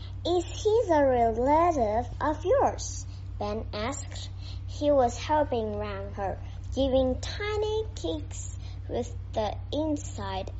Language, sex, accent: Chinese, male, American